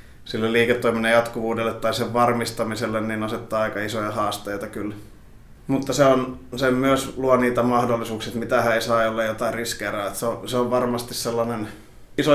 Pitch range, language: 110-120 Hz, Finnish